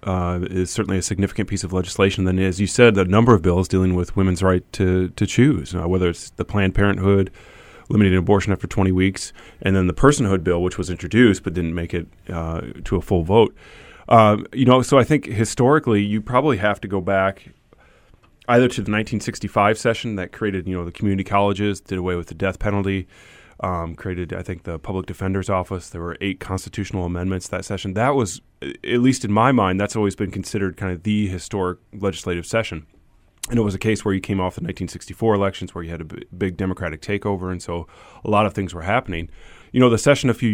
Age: 30-49